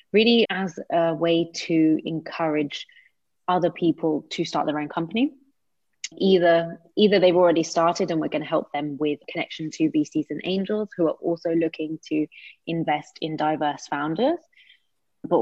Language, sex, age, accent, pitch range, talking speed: English, female, 20-39, British, 155-175 Hz, 155 wpm